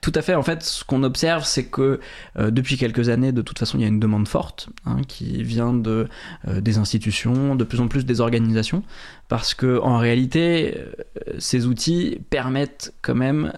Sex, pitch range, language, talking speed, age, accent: male, 115-140 Hz, French, 205 wpm, 20-39, French